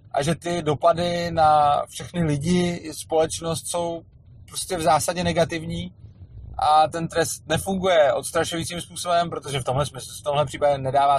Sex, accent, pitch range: male, native, 120-155 Hz